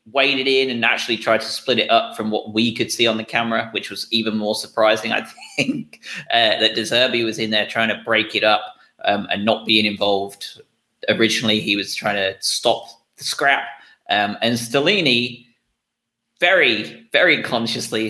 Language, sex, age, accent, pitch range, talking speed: English, male, 30-49, British, 110-135 Hz, 180 wpm